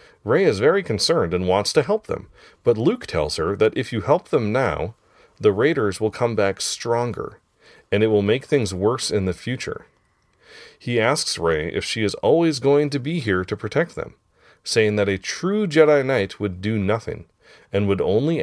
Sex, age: male, 30-49